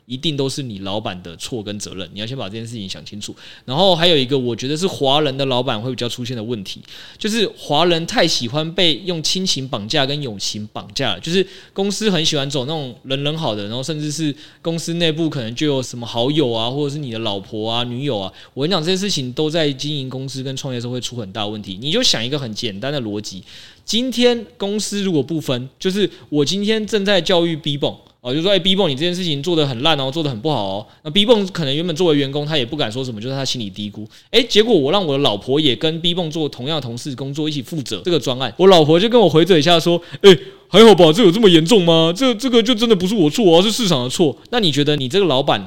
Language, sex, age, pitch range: Chinese, male, 20-39, 125-175 Hz